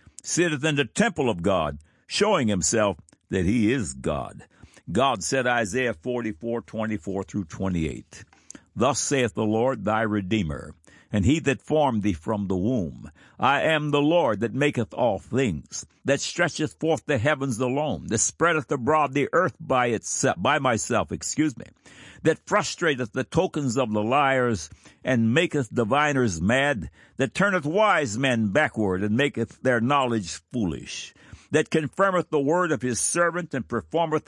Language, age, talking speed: English, 60-79, 150 wpm